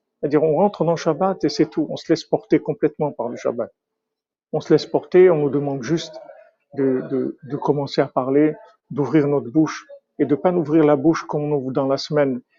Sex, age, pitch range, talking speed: male, 50-69, 140-160 Hz, 225 wpm